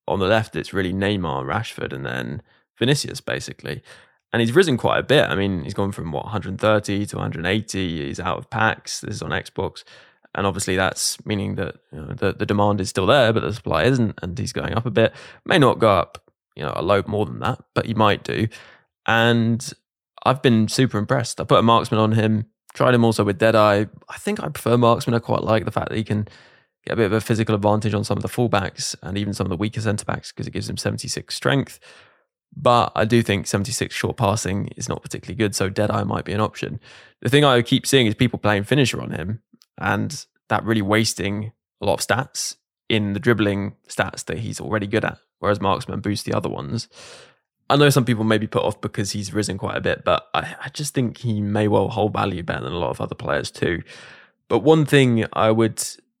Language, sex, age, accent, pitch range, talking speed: English, male, 10-29, British, 100-115 Hz, 230 wpm